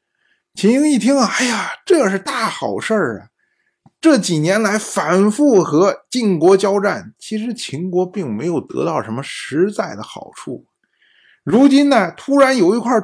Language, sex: Chinese, male